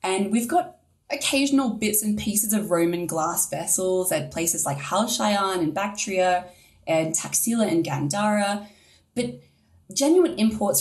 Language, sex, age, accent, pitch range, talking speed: English, female, 20-39, Australian, 160-215 Hz, 135 wpm